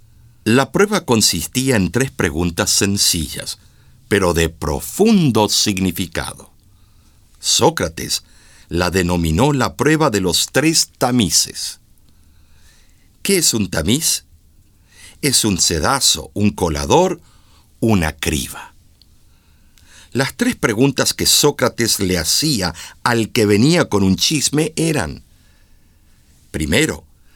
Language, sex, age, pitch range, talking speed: Spanish, male, 60-79, 85-125 Hz, 100 wpm